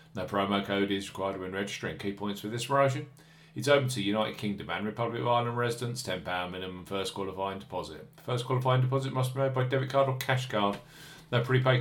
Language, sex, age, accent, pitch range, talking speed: English, male, 40-59, British, 105-140 Hz, 210 wpm